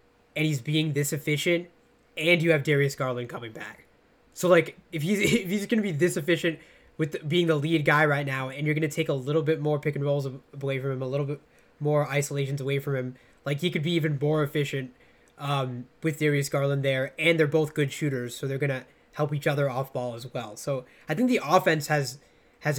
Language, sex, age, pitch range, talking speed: English, male, 10-29, 135-160 Hz, 225 wpm